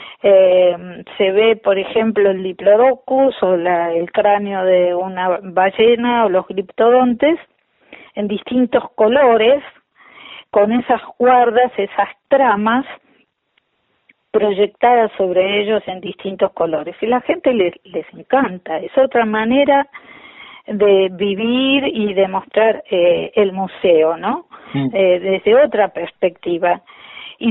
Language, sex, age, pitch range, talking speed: Spanish, female, 40-59, 185-245 Hz, 120 wpm